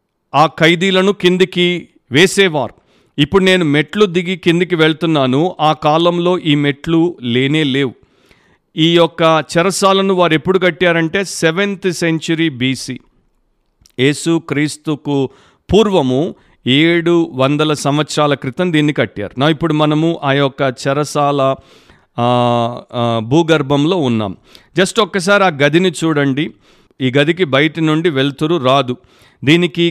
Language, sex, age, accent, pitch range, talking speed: Telugu, male, 50-69, native, 145-180 Hz, 105 wpm